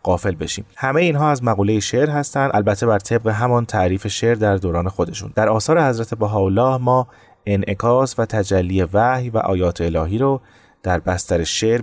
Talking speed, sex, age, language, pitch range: 165 wpm, male, 30-49, Persian, 95-125 Hz